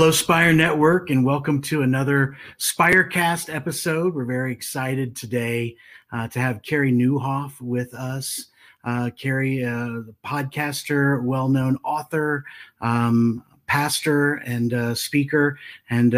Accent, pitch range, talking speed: American, 130-160 Hz, 120 wpm